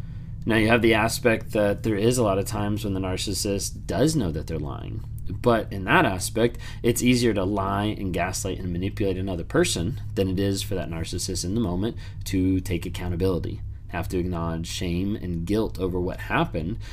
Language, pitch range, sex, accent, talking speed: English, 90-110 Hz, male, American, 195 wpm